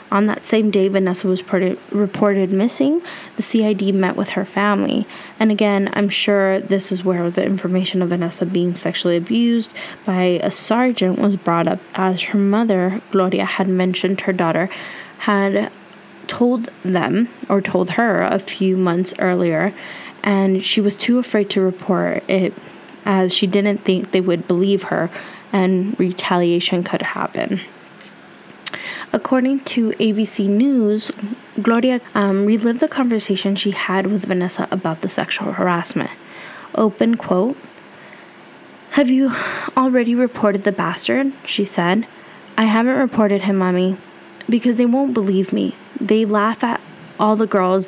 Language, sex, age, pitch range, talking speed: English, female, 10-29, 185-220 Hz, 145 wpm